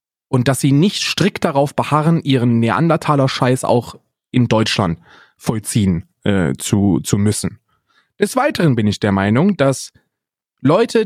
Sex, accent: male, German